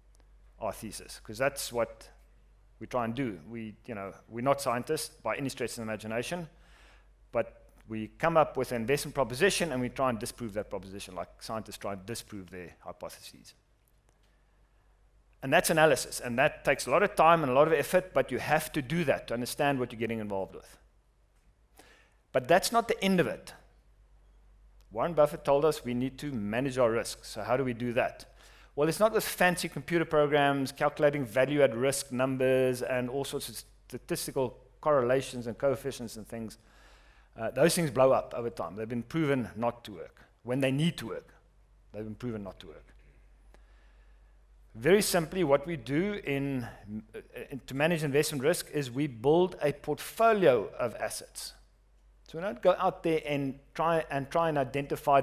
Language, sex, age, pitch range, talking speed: English, male, 40-59, 115-150 Hz, 185 wpm